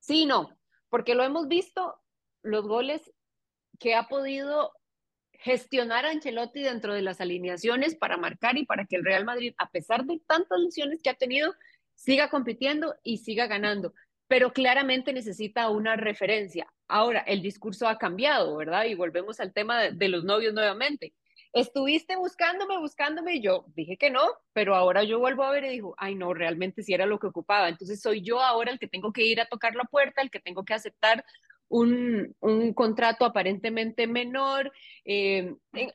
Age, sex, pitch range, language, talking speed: 30-49, female, 200-270 Hz, Spanish, 180 wpm